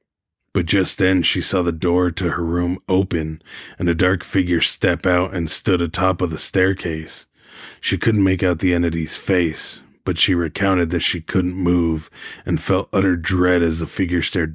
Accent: American